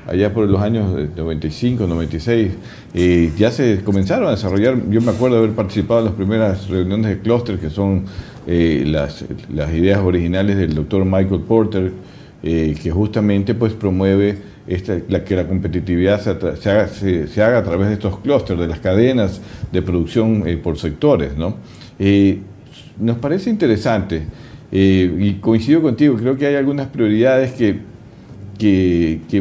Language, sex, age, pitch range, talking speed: Spanish, male, 50-69, 95-120 Hz, 165 wpm